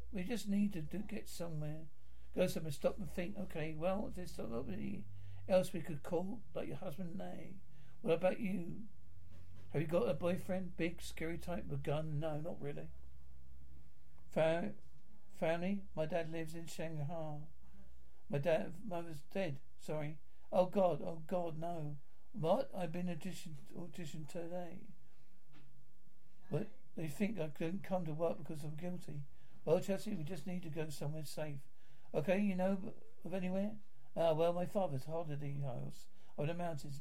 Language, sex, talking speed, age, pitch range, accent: English, male, 160 wpm, 60-79, 145-180 Hz, British